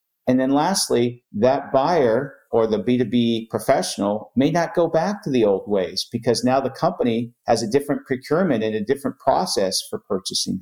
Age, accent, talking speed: 50-69, American, 175 wpm